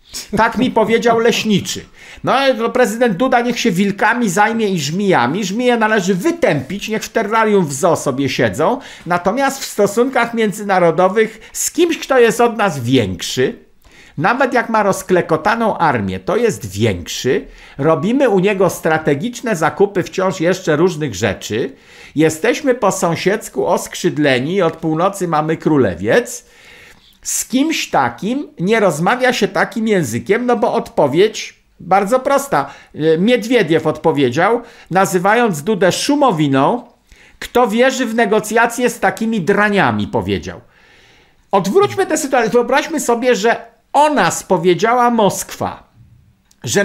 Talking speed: 120 wpm